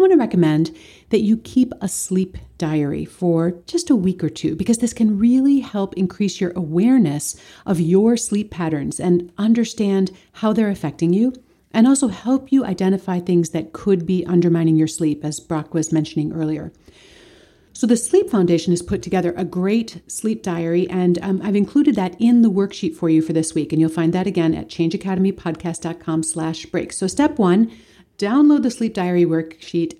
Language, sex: English, female